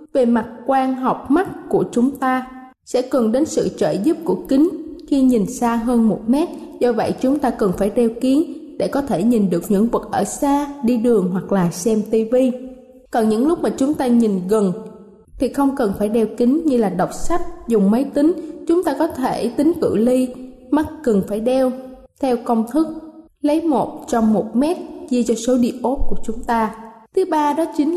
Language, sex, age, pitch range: Thai, female, 20-39, 225-300 Hz